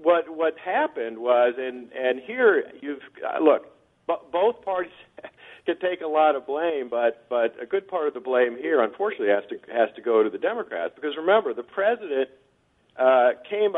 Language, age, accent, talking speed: English, 50-69, American, 185 wpm